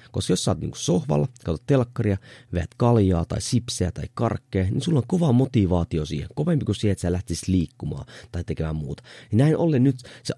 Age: 30-49